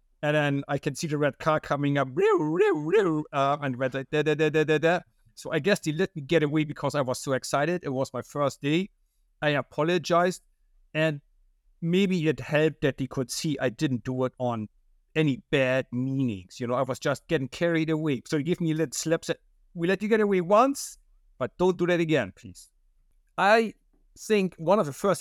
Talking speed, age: 220 wpm, 50-69